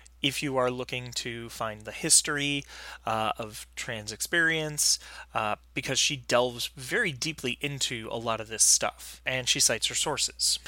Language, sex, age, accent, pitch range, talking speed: English, male, 30-49, American, 110-140 Hz, 165 wpm